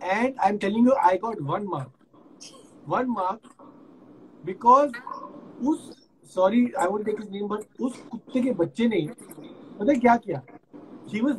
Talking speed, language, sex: 115 wpm, English, male